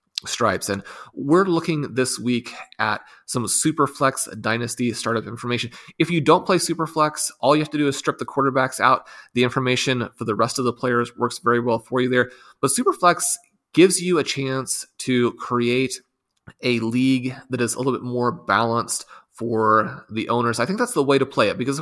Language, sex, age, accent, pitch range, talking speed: English, male, 30-49, American, 120-140 Hz, 195 wpm